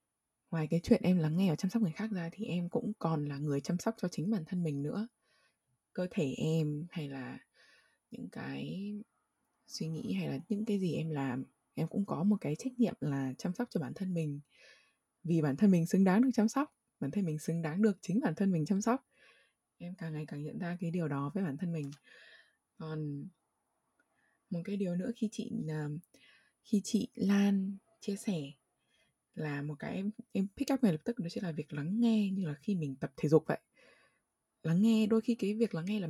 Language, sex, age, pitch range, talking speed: Vietnamese, female, 20-39, 150-210 Hz, 220 wpm